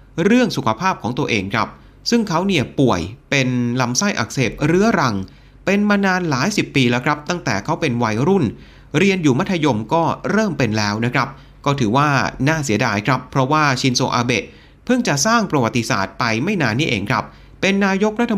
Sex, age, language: male, 30-49, Thai